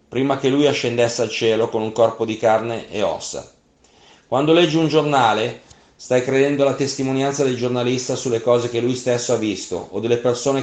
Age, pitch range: 30-49, 120-140 Hz